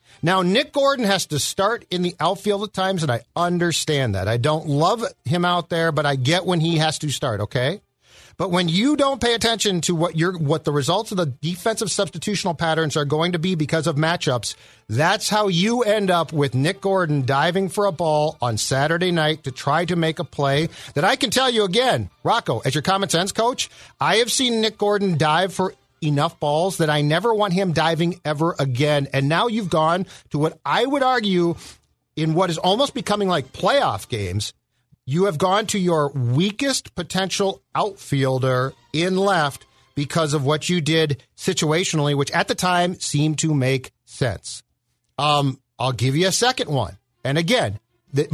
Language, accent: English, American